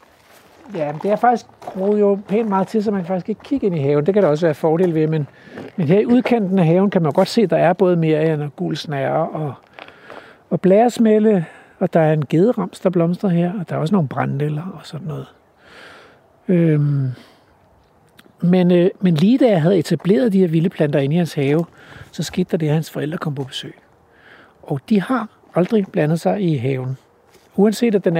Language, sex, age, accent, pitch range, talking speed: Danish, male, 60-79, native, 155-200 Hz, 215 wpm